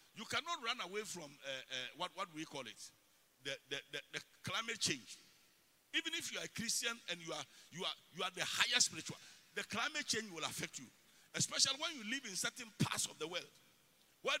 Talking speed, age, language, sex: 215 wpm, 50-69, English, male